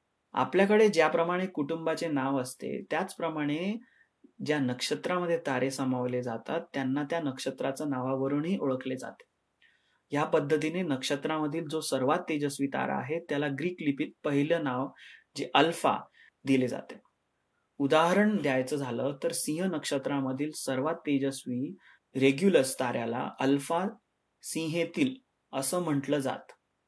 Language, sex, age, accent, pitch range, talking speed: Marathi, male, 30-49, native, 135-170 Hz, 105 wpm